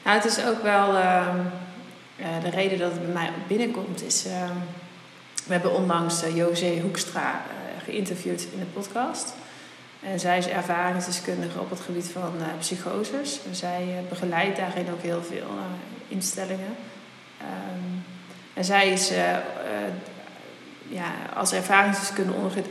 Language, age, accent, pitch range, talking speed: Dutch, 20-39, Dutch, 175-190 Hz, 150 wpm